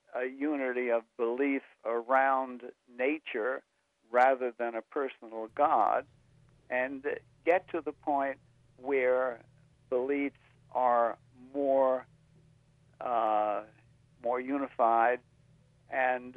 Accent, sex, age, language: American, male, 60-79, English